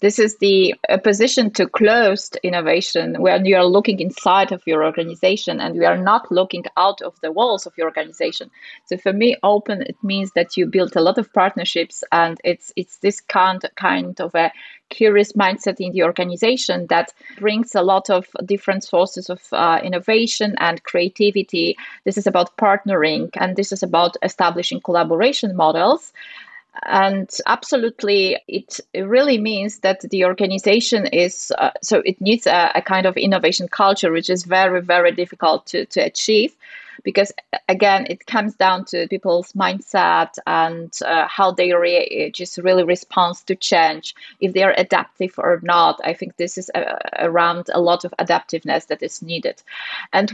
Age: 30-49